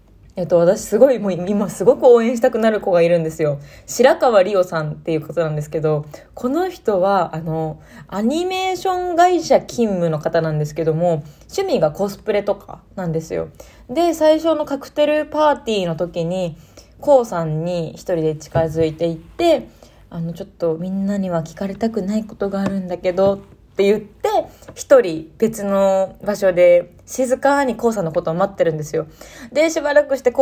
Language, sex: Japanese, female